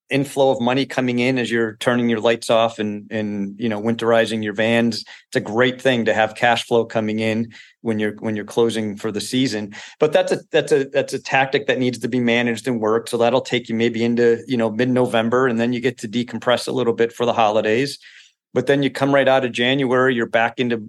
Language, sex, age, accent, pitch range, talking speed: English, male, 40-59, American, 110-120 Hz, 240 wpm